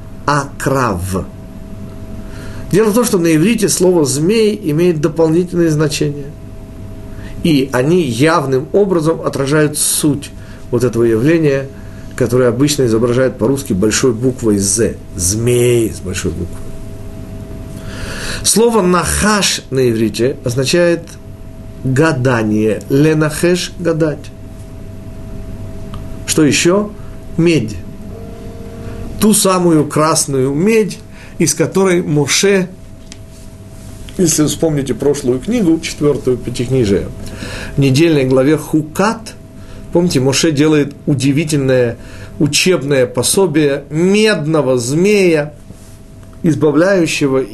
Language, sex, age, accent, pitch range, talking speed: Russian, male, 40-59, native, 105-160 Hz, 85 wpm